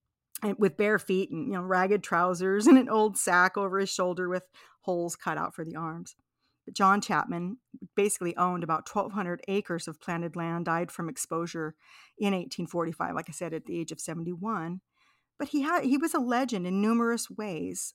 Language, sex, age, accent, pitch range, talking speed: English, female, 40-59, American, 175-220 Hz, 205 wpm